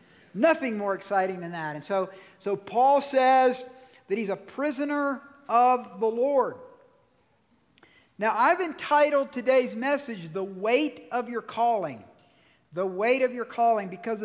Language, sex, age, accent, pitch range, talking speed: English, male, 50-69, American, 190-260 Hz, 140 wpm